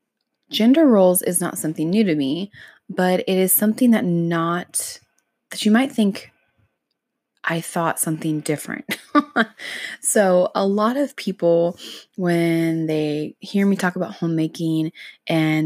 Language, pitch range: English, 155-180 Hz